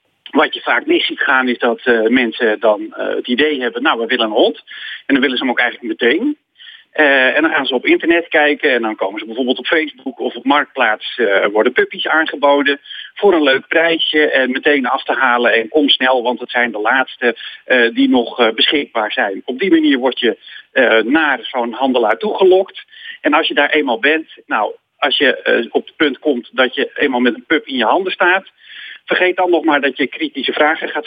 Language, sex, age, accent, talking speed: English, male, 40-59, Dutch, 225 wpm